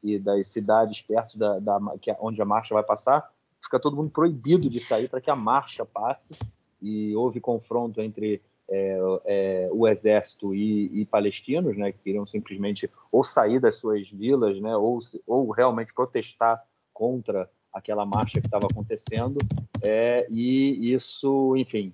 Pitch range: 105-125 Hz